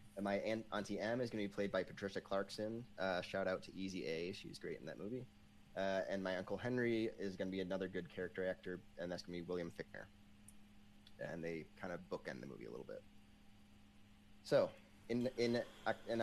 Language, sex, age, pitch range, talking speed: English, male, 30-49, 95-105 Hz, 210 wpm